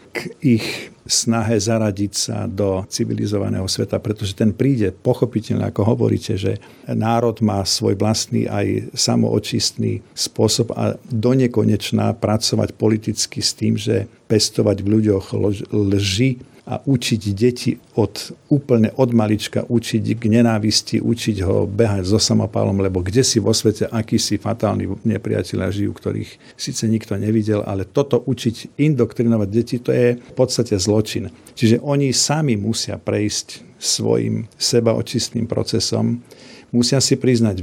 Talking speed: 130 wpm